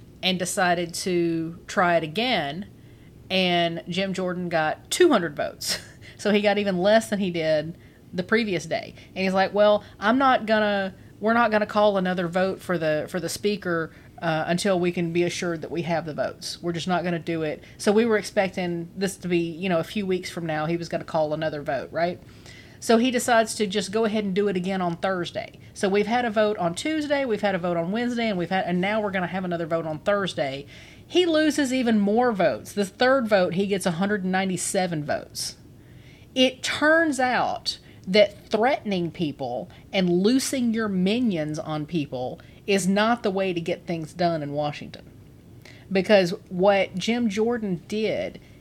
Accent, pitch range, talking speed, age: American, 170-215 Hz, 195 wpm, 40-59